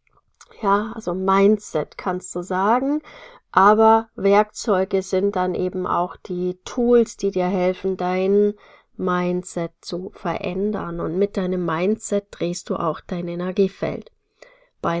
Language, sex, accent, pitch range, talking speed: German, female, German, 185-225 Hz, 125 wpm